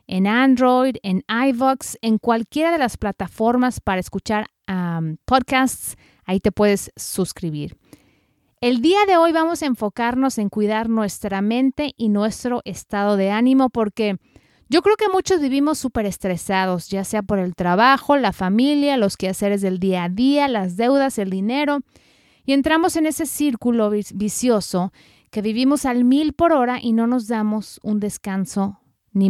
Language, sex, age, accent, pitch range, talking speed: Spanish, female, 30-49, Mexican, 200-265 Hz, 160 wpm